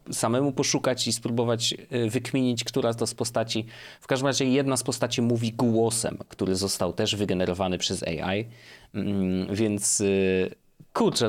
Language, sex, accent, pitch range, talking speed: Polish, male, native, 110-140 Hz, 140 wpm